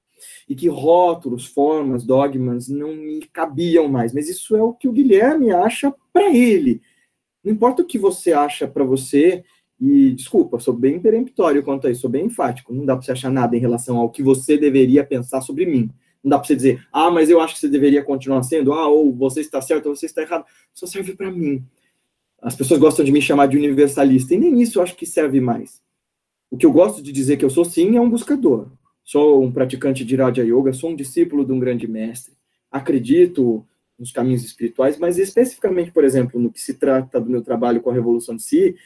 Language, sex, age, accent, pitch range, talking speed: Portuguese, male, 20-39, Brazilian, 130-185 Hz, 220 wpm